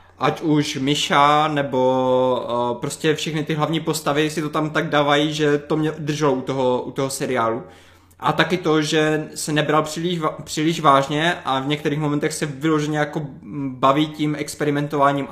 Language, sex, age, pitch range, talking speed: Czech, male, 20-39, 130-150 Hz, 160 wpm